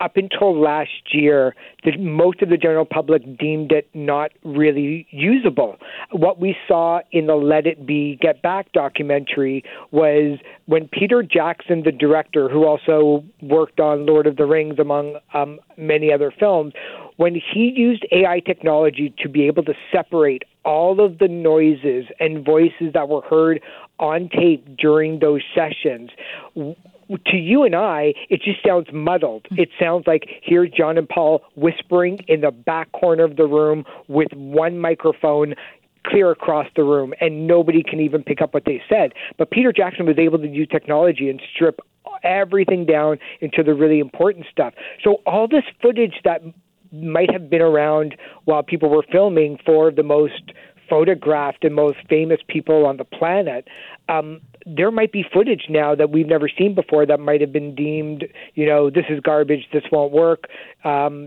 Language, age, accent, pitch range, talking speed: English, 50-69, American, 150-175 Hz, 170 wpm